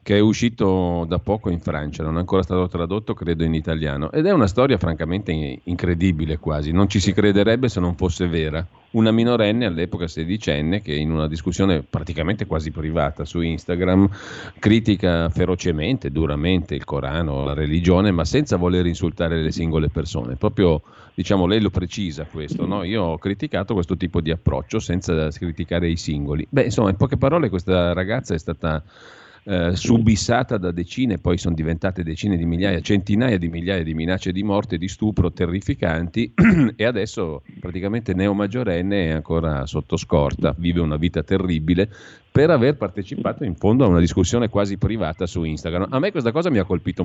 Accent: native